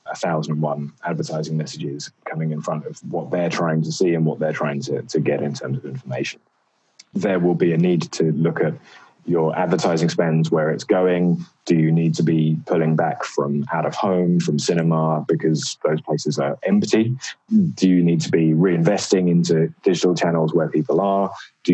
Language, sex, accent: English, male, British